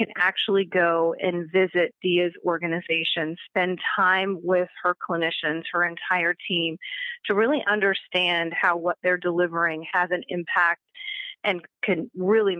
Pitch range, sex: 170-195 Hz, female